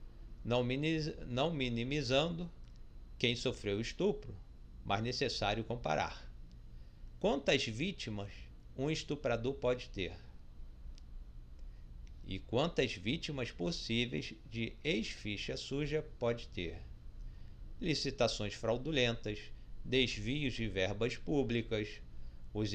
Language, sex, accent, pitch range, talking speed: Portuguese, male, Brazilian, 80-130 Hz, 80 wpm